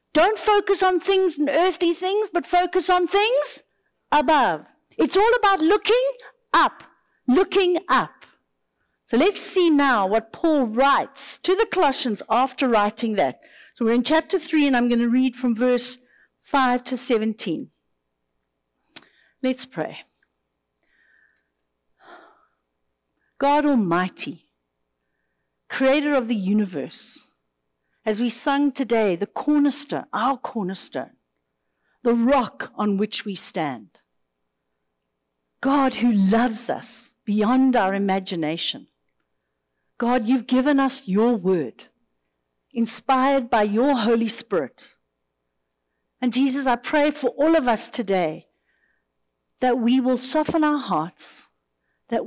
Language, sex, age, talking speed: English, female, 60-79, 120 wpm